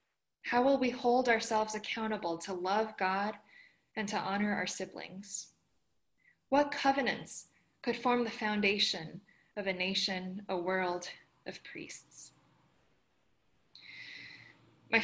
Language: English